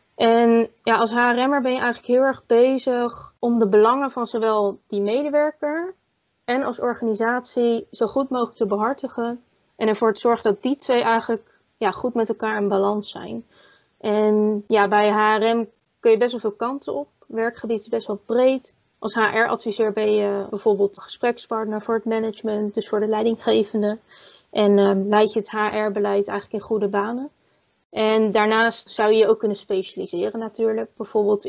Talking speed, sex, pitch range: 170 wpm, female, 205-230 Hz